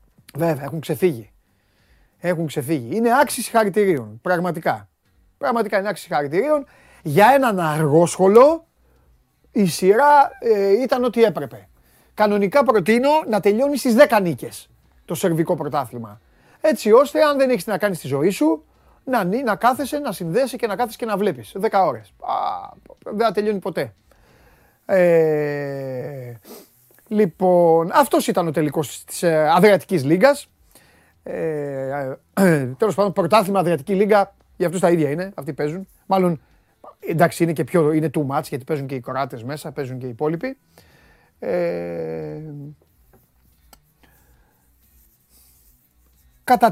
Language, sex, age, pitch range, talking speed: Greek, male, 30-49, 135-215 Hz, 125 wpm